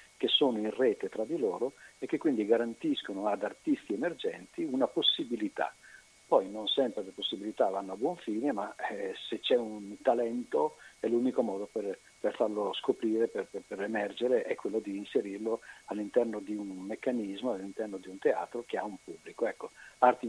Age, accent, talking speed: 50-69, native, 175 wpm